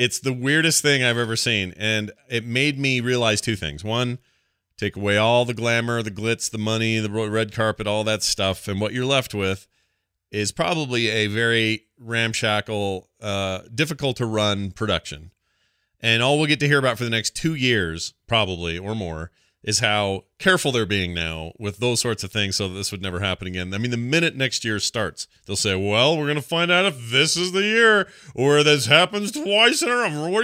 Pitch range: 95-130 Hz